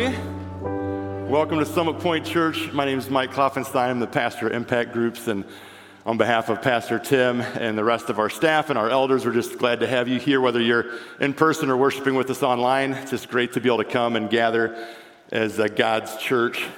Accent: American